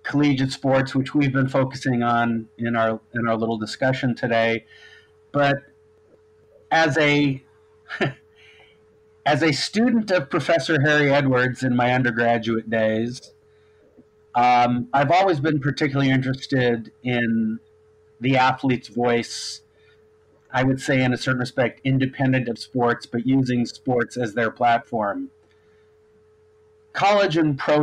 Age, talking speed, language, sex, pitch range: 40-59, 125 wpm, English, male, 120-160 Hz